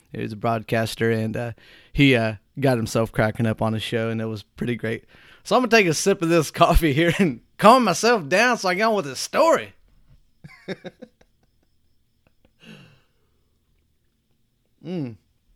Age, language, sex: 30-49, English, male